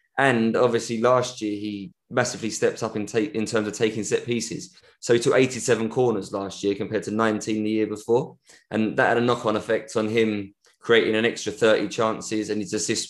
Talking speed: 205 wpm